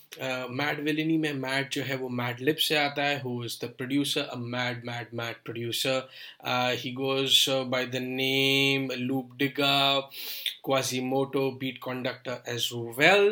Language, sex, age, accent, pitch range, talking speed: English, male, 10-29, Indian, 125-140 Hz, 145 wpm